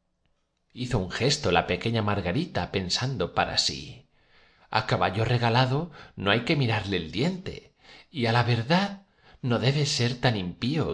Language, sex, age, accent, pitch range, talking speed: Spanish, male, 40-59, Spanish, 95-130 Hz, 150 wpm